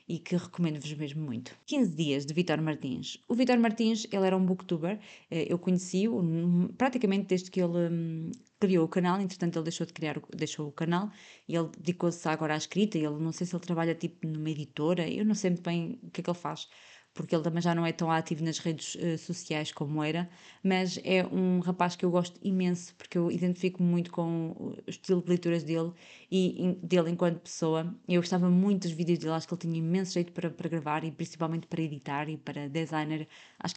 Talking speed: 210 wpm